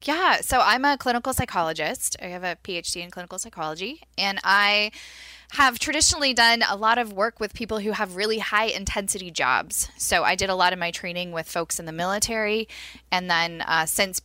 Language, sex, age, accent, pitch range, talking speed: English, female, 10-29, American, 160-210 Hz, 200 wpm